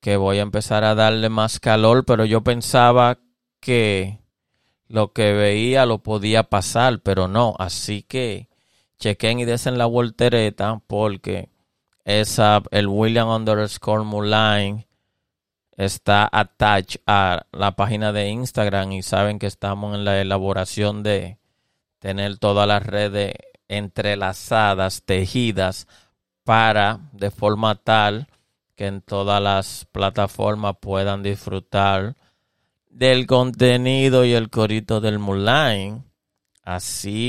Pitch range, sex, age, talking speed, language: 100-115 Hz, male, 30-49, 115 wpm, Spanish